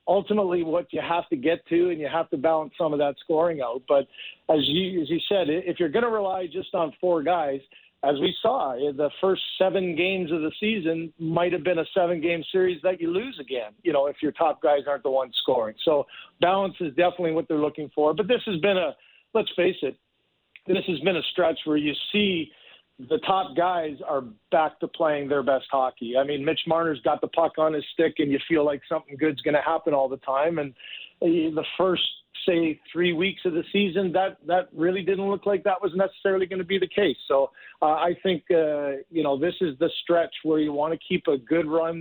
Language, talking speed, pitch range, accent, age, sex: English, 230 wpm, 145-180 Hz, American, 50-69, male